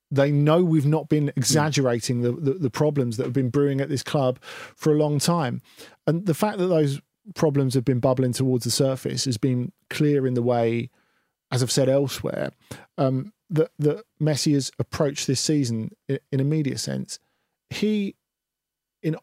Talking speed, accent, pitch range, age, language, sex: 180 wpm, British, 120-150 Hz, 40-59, English, male